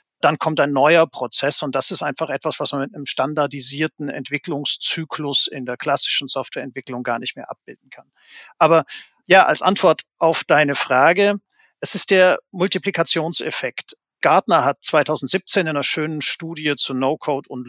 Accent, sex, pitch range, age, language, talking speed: German, male, 135-170 Hz, 50-69, German, 155 wpm